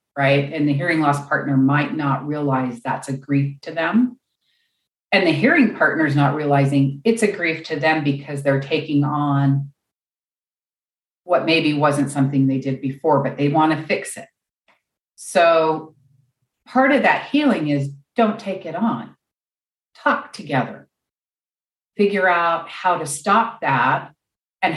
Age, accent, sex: 40-59, American, female